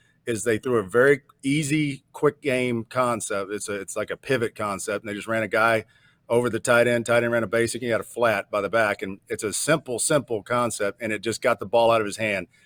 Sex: male